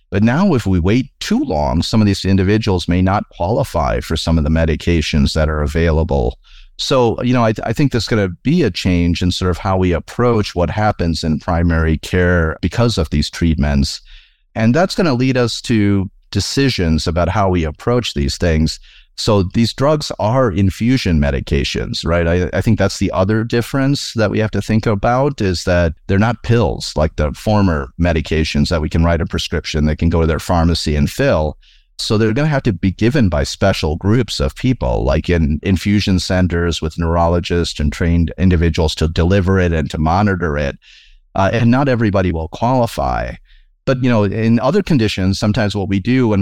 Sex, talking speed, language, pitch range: male, 195 wpm, English, 85-110 Hz